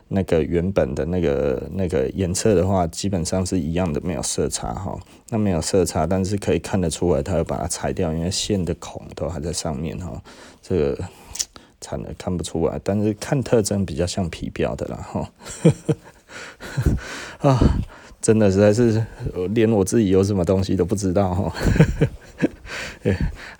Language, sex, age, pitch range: Chinese, male, 20-39, 85-105 Hz